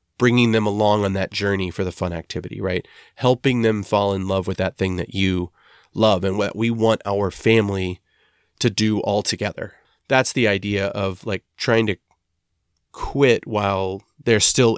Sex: male